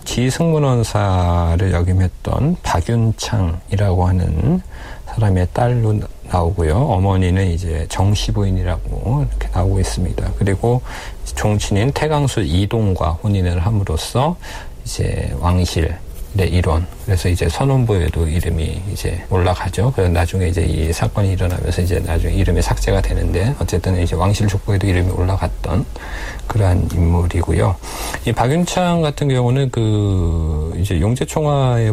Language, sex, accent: Korean, male, native